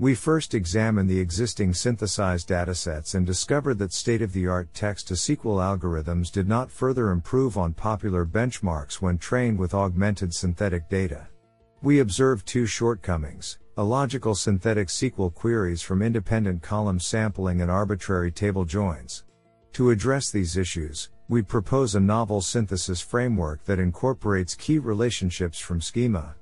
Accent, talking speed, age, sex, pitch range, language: American, 130 wpm, 50-69, male, 90-115 Hz, English